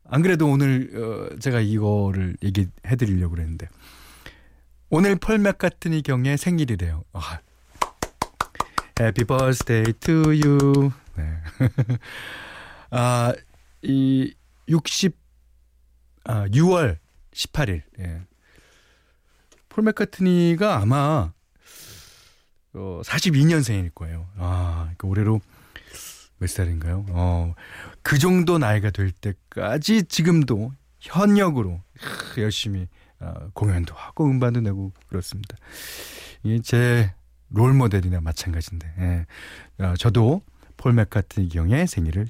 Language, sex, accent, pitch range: Korean, male, native, 85-135 Hz